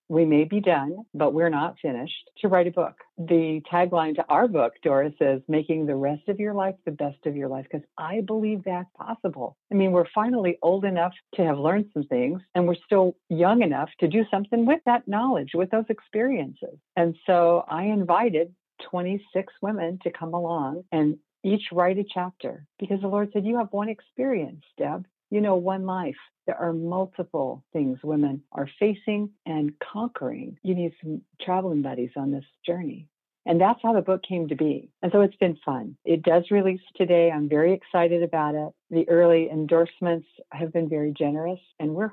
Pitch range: 160-200 Hz